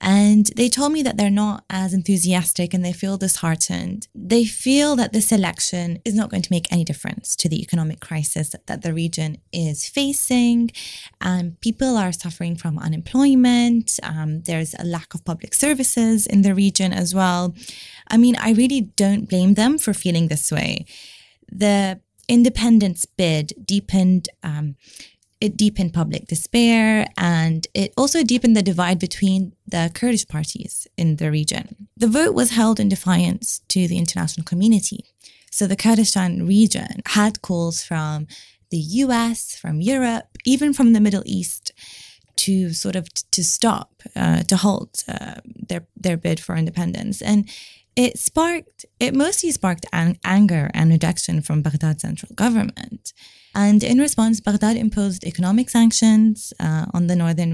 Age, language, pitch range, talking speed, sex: 20-39, English, 170-225 Hz, 155 wpm, female